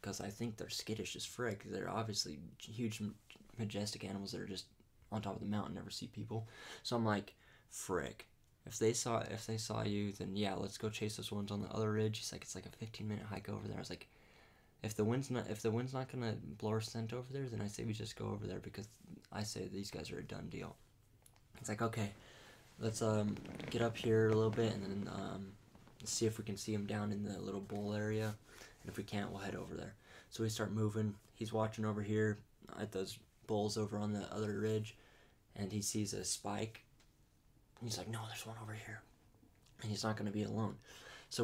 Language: English